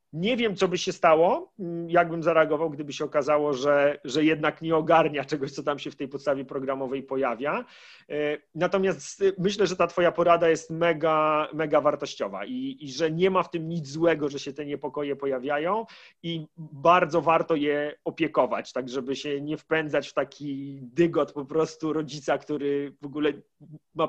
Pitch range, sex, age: 150-180 Hz, male, 30-49